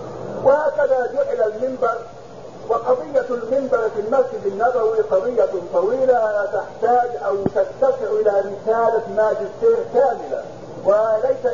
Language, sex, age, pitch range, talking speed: English, male, 50-69, 220-290 Hz, 100 wpm